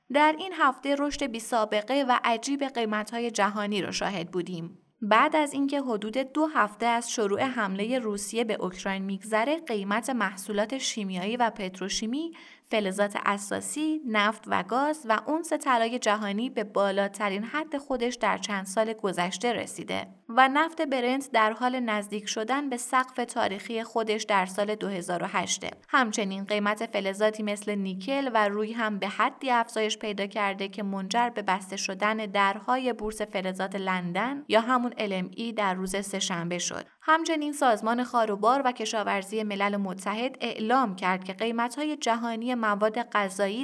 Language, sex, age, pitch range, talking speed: Persian, female, 30-49, 195-245 Hz, 145 wpm